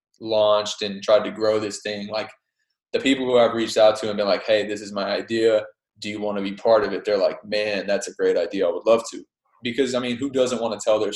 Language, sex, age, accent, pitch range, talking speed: English, male, 20-39, American, 105-115 Hz, 275 wpm